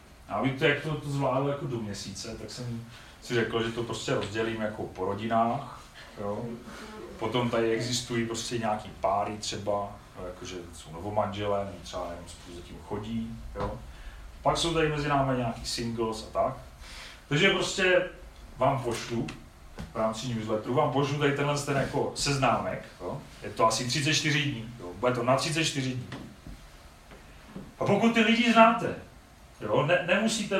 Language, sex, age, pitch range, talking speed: Czech, male, 40-59, 100-135 Hz, 160 wpm